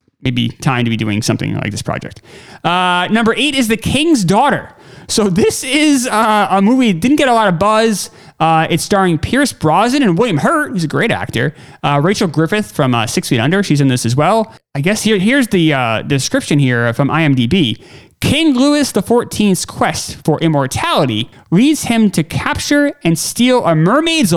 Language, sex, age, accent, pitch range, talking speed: English, male, 30-49, American, 150-235 Hz, 190 wpm